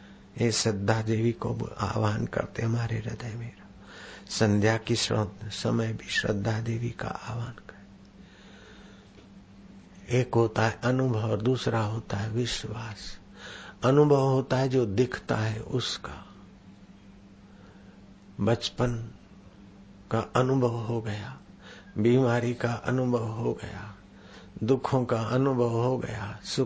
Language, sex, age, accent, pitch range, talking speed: Hindi, male, 60-79, native, 100-125 Hz, 55 wpm